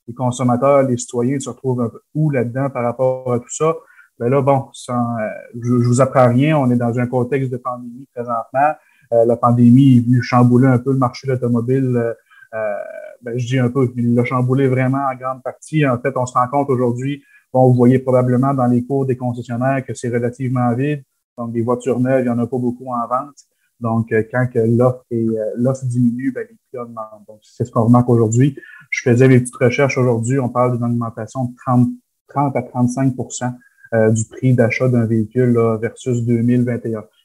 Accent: Canadian